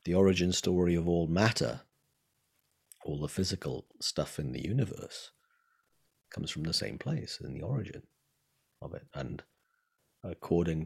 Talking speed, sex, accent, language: 140 wpm, male, British, English